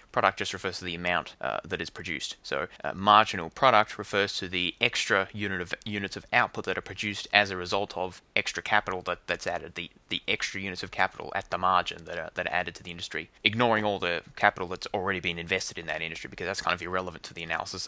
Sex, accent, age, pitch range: male, Australian, 20-39, 95-120 Hz